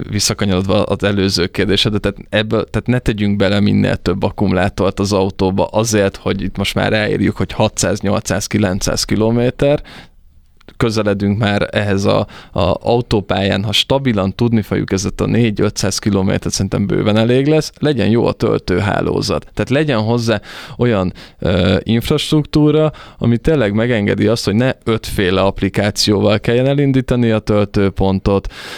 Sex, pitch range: male, 100-115 Hz